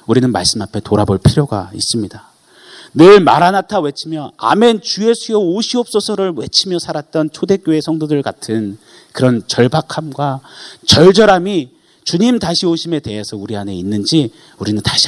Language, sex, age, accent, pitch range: Korean, male, 30-49, native, 110-165 Hz